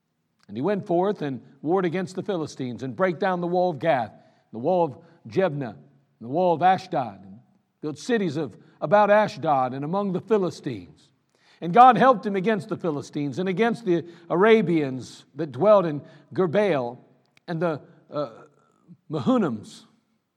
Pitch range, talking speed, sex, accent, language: 150-210 Hz, 160 wpm, male, American, English